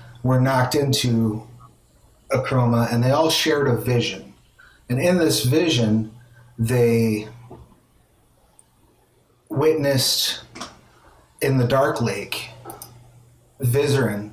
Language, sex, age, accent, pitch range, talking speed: English, male, 30-49, American, 115-130 Hz, 90 wpm